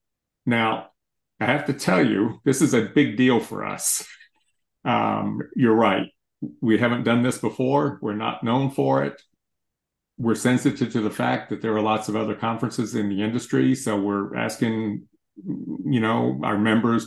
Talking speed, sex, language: 170 wpm, male, English